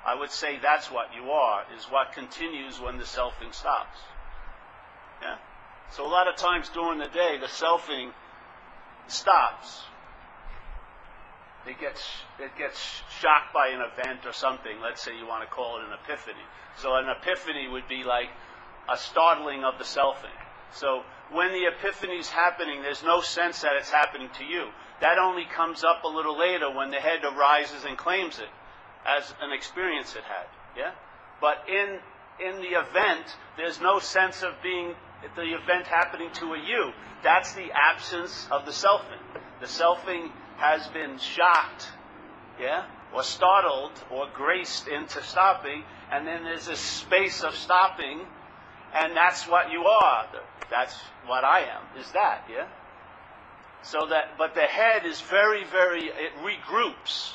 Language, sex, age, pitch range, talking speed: English, male, 50-69, 145-180 Hz, 160 wpm